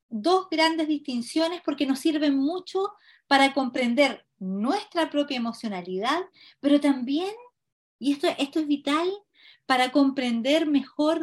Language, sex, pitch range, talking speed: Spanish, female, 270-330 Hz, 120 wpm